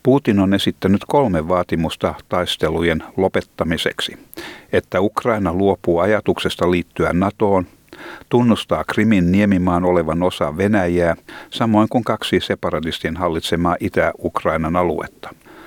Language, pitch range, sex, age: Finnish, 90-110 Hz, male, 60-79